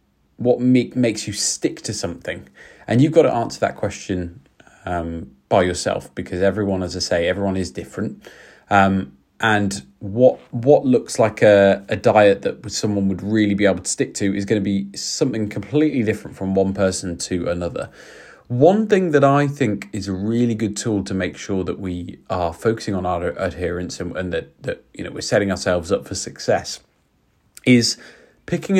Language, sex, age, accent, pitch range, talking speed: English, male, 20-39, British, 95-125 Hz, 190 wpm